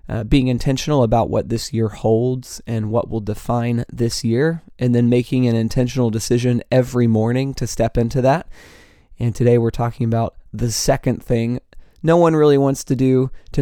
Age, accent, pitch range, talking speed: 20-39, American, 115-130 Hz, 180 wpm